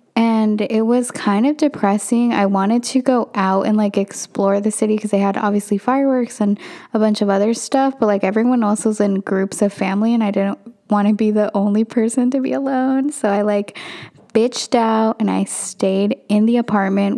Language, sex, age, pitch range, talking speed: English, female, 10-29, 205-230 Hz, 205 wpm